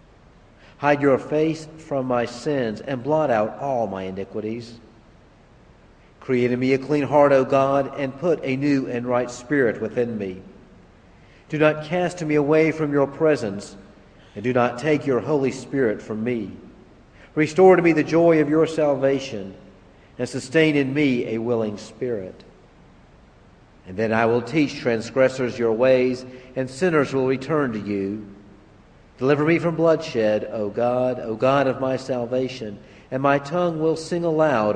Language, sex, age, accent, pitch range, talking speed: English, male, 50-69, American, 110-145 Hz, 160 wpm